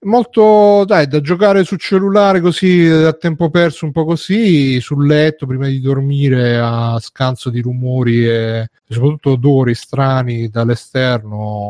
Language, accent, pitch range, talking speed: Italian, native, 125-155 Hz, 140 wpm